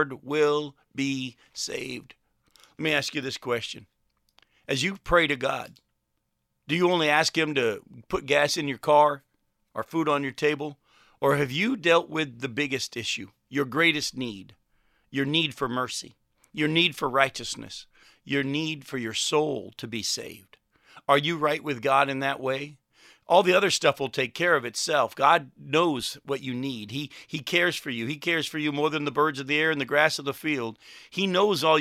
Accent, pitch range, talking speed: American, 130-155 Hz, 195 wpm